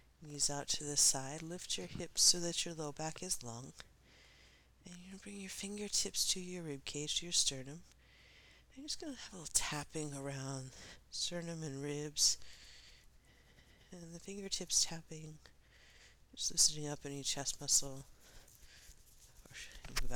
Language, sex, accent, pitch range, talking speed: English, female, American, 125-155 Hz, 160 wpm